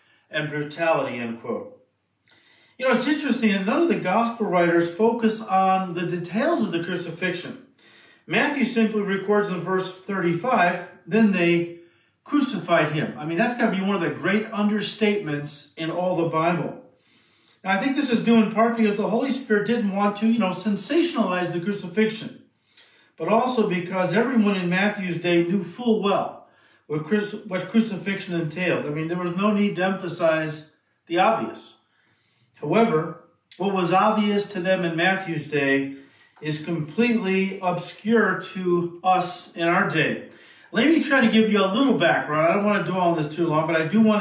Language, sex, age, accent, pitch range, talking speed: English, male, 50-69, American, 170-220 Hz, 170 wpm